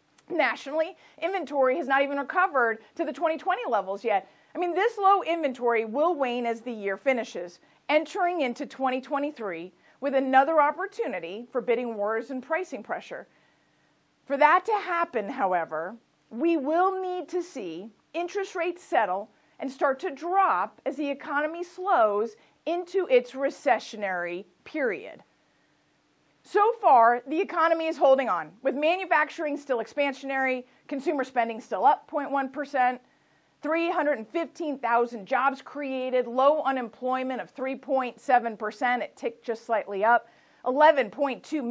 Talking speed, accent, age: 125 wpm, American, 50-69